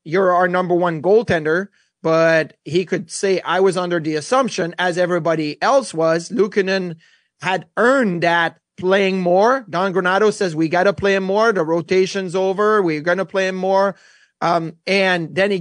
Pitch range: 175-210 Hz